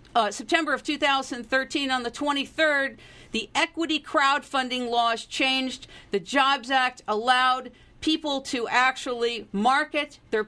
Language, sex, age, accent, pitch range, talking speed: English, female, 50-69, American, 245-300 Hz, 120 wpm